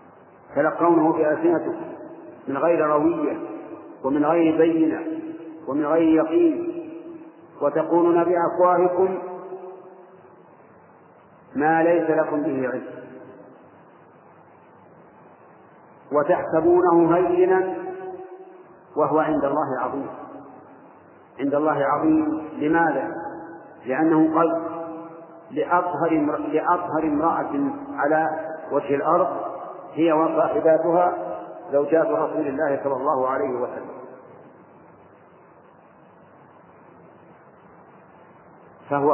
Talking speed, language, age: 70 wpm, Arabic, 50-69